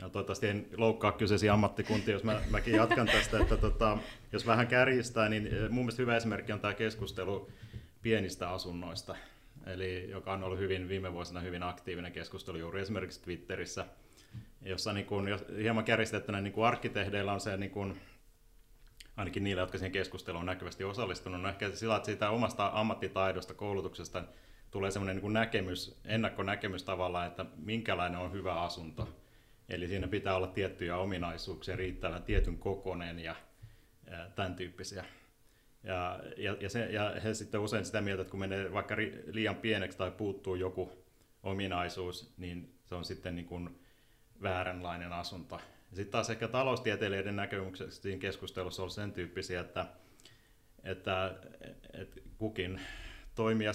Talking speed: 145 wpm